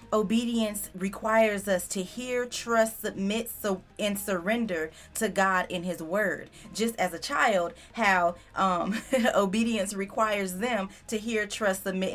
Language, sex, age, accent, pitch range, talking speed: English, female, 20-39, American, 190-230 Hz, 135 wpm